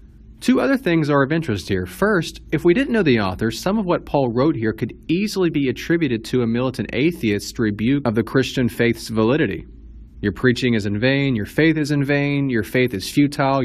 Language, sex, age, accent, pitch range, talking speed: English, male, 30-49, American, 110-155 Hz, 210 wpm